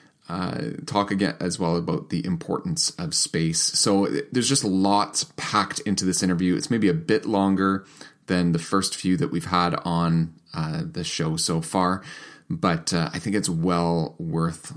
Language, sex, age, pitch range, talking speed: English, male, 30-49, 80-105 Hz, 175 wpm